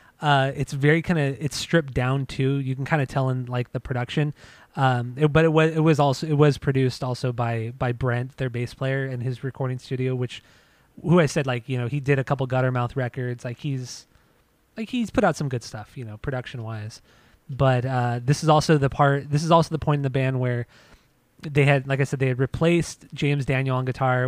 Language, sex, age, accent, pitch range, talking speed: English, male, 20-39, American, 125-145 Hz, 235 wpm